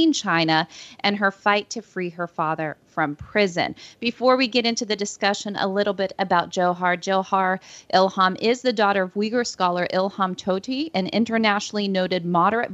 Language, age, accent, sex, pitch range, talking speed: English, 40-59, American, female, 175-210 Hz, 165 wpm